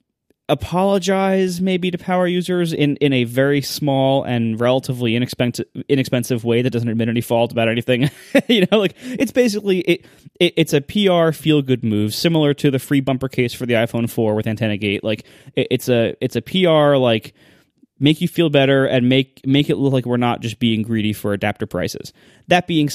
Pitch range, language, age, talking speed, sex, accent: 125-175 Hz, English, 20-39, 195 wpm, male, American